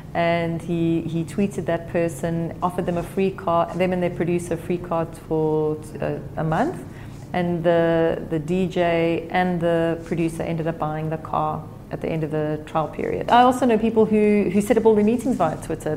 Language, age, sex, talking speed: English, 30-49, female, 205 wpm